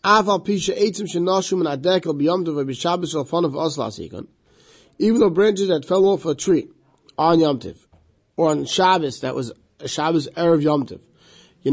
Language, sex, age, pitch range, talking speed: English, male, 30-49, 140-175 Hz, 115 wpm